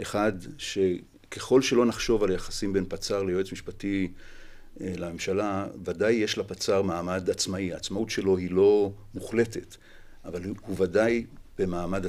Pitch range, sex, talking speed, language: 90-100 Hz, male, 125 wpm, Hebrew